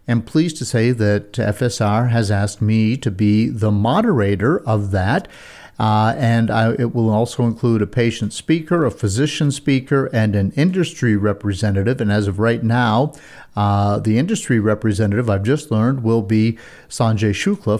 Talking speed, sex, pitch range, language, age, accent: 160 wpm, male, 105-125 Hz, English, 50-69, American